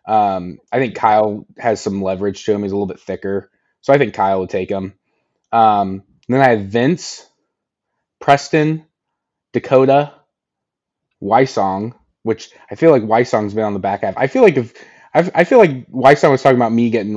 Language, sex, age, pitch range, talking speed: English, male, 20-39, 100-130 Hz, 190 wpm